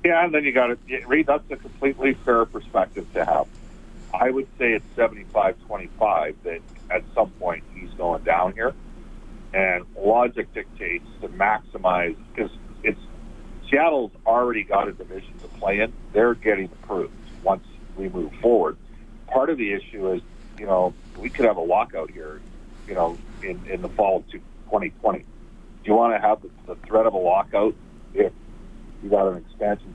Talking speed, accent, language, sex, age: 170 wpm, American, English, male, 50-69